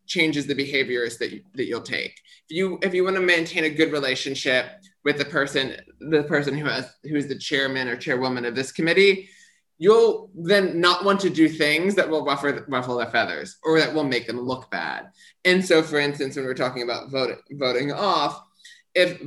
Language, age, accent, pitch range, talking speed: English, 20-39, American, 140-190 Hz, 200 wpm